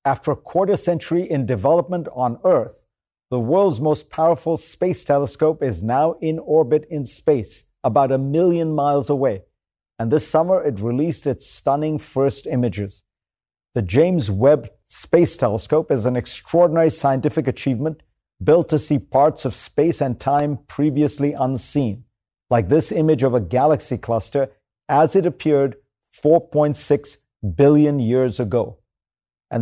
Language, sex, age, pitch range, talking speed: English, male, 50-69, 125-155 Hz, 140 wpm